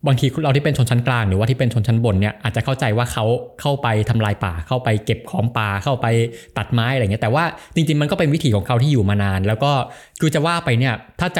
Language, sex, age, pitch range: Thai, male, 20-39, 105-135 Hz